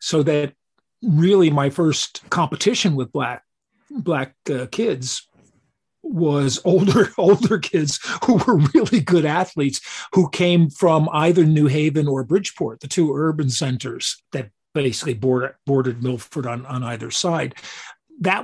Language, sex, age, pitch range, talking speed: English, male, 40-59, 135-170 Hz, 135 wpm